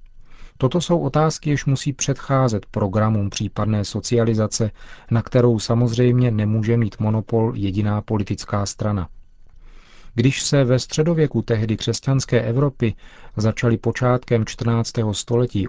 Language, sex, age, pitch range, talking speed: Czech, male, 40-59, 105-125 Hz, 110 wpm